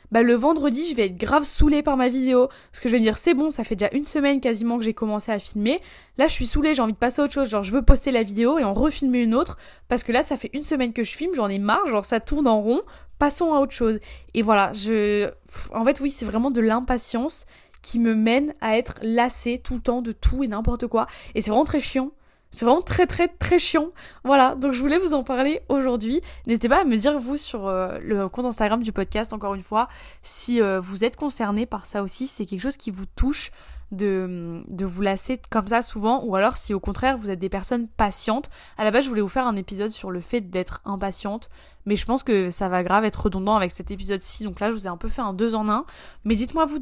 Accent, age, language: French, 20-39, French